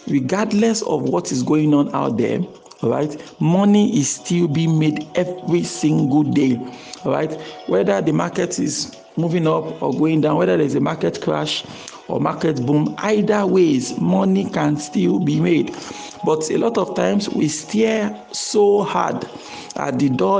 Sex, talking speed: male, 155 wpm